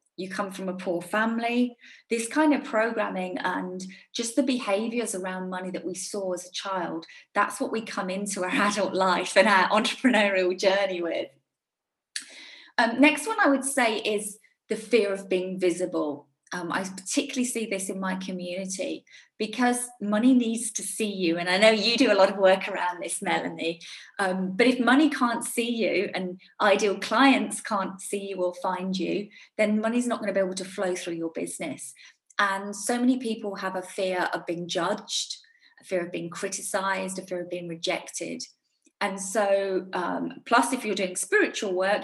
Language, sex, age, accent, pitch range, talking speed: English, female, 30-49, British, 185-245 Hz, 185 wpm